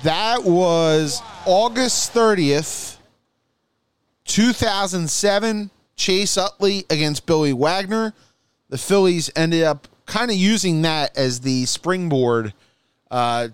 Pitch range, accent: 125-180 Hz, American